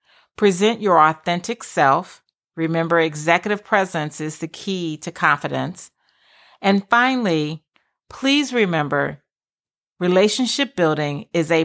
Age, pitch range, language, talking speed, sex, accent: 40-59, 150-200 Hz, English, 105 wpm, female, American